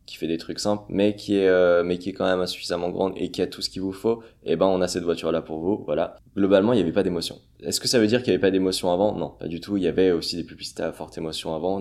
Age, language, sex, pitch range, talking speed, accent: 20-39, French, male, 80-95 Hz, 330 wpm, French